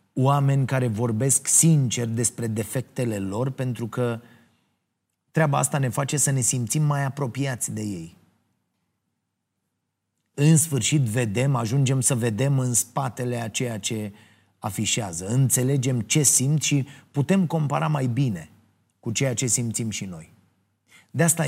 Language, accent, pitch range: Romanian, native, 105-140 Hz